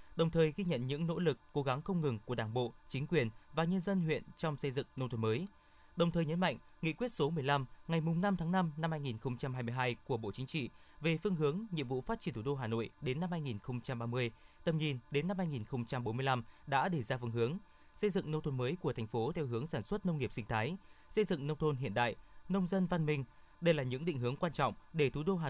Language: Vietnamese